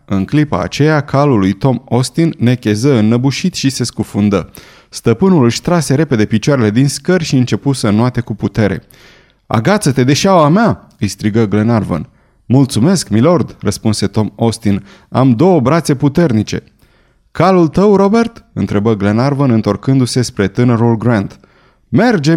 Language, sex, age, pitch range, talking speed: Romanian, male, 30-49, 105-145 Hz, 135 wpm